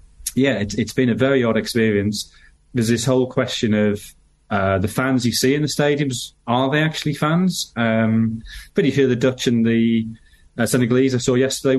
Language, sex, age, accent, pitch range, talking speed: English, male, 30-49, British, 105-135 Hz, 185 wpm